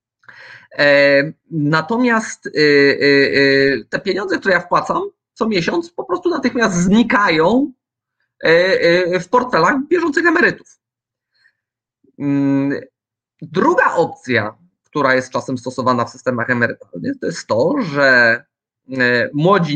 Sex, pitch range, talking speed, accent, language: male, 135-225 Hz, 90 wpm, native, Polish